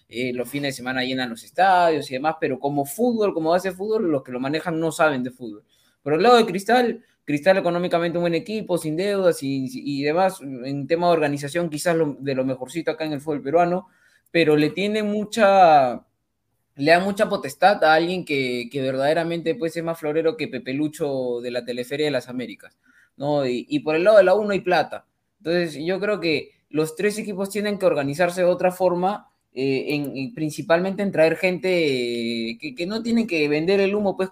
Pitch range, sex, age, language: 140-185 Hz, male, 20-39, Spanish